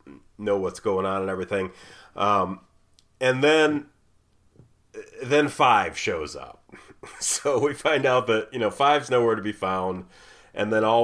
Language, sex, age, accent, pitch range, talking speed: English, male, 30-49, American, 90-105 Hz, 150 wpm